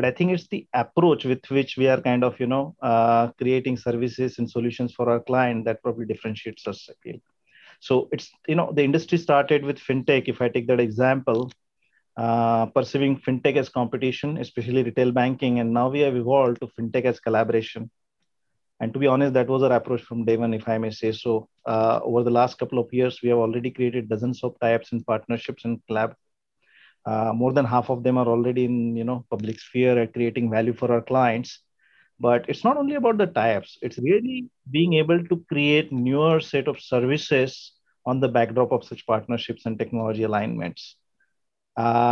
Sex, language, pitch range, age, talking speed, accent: male, English, 115-135 Hz, 30-49, 195 wpm, Indian